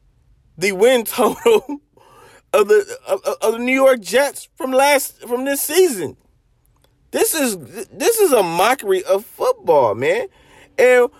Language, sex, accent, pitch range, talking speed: English, male, American, 150-245 Hz, 140 wpm